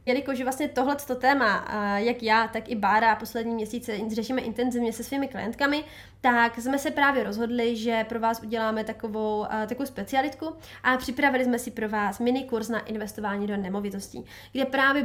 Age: 20-39